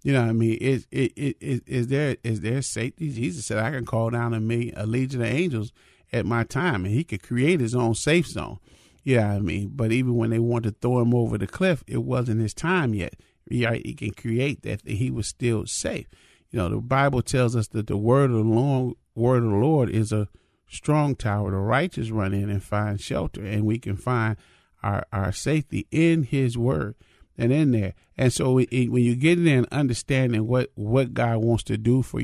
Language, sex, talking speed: English, male, 230 wpm